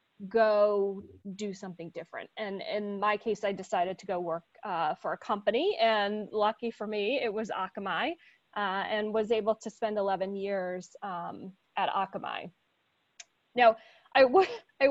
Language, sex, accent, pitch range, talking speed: English, female, American, 200-235 Hz, 155 wpm